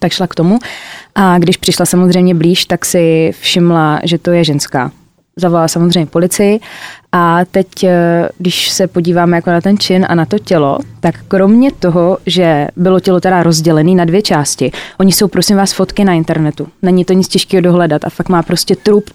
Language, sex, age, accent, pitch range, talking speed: Czech, female, 20-39, native, 170-195 Hz, 190 wpm